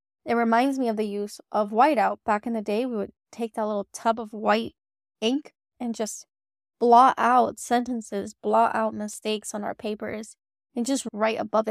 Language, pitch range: English, 210-235 Hz